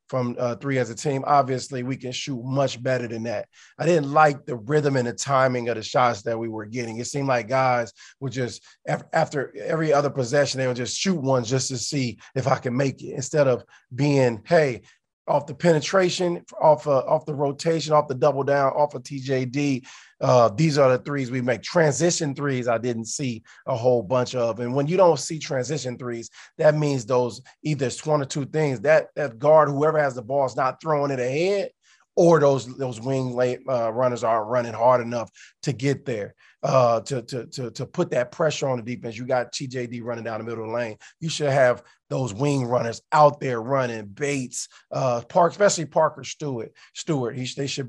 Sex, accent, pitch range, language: male, American, 120-145 Hz, English